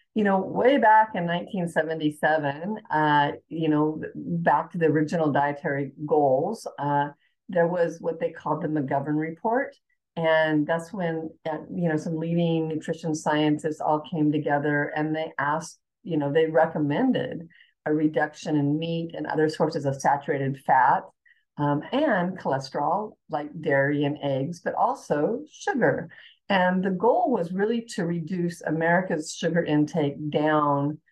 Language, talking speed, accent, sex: English, 145 wpm, American, female